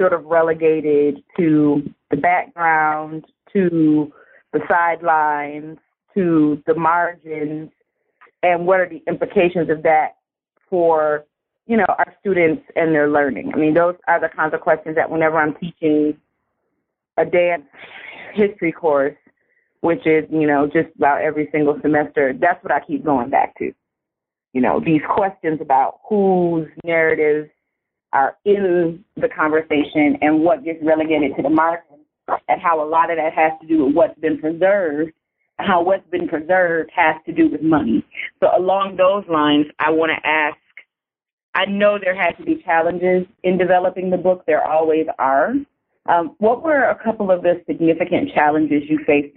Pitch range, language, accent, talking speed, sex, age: 155-185 Hz, English, American, 160 wpm, female, 30-49